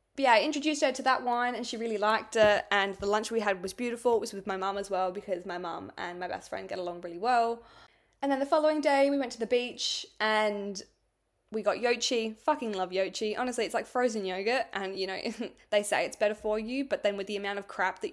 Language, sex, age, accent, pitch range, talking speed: English, female, 10-29, Australian, 200-250 Hz, 255 wpm